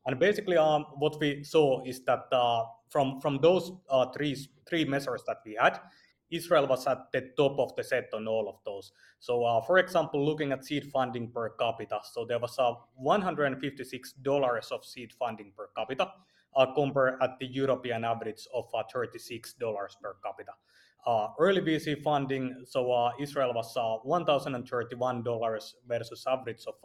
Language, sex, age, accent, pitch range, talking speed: English, male, 30-49, Finnish, 120-145 Hz, 170 wpm